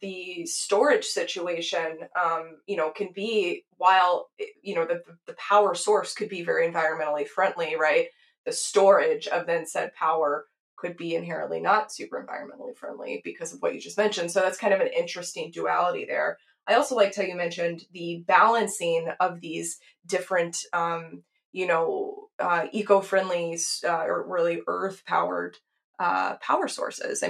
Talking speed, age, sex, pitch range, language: 160 wpm, 20-39, female, 180-290 Hz, English